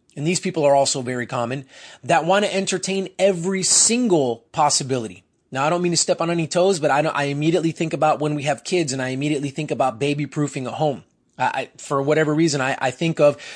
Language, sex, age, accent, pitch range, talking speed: English, male, 30-49, American, 135-155 Hz, 210 wpm